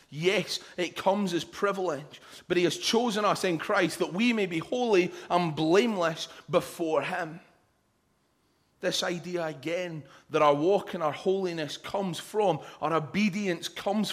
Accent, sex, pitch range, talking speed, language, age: British, male, 150-180 Hz, 150 wpm, English, 30-49